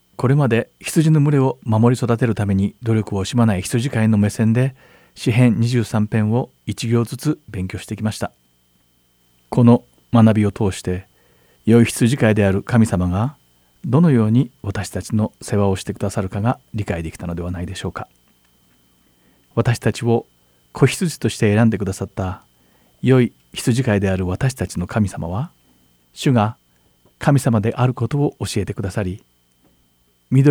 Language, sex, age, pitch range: Japanese, male, 40-59, 85-120 Hz